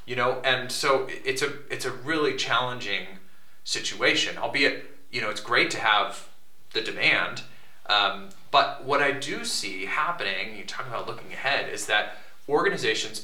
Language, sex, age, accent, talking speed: English, male, 30-49, American, 160 wpm